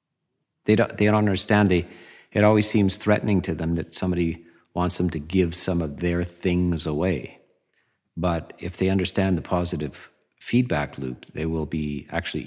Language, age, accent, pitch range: English, 50-69, American, 80-95 Hz